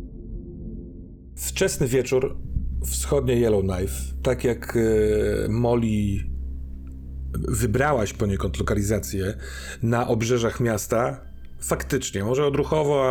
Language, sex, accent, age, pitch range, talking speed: Polish, male, native, 40-59, 95-125 Hz, 80 wpm